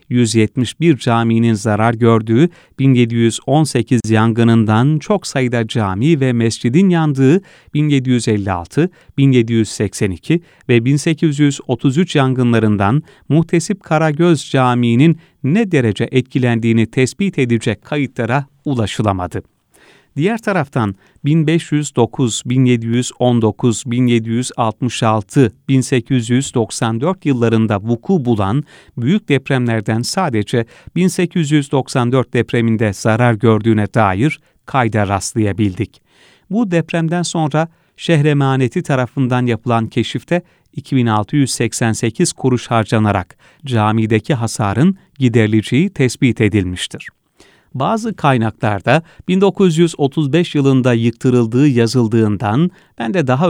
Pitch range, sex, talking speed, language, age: 115-150 Hz, male, 80 wpm, Turkish, 40-59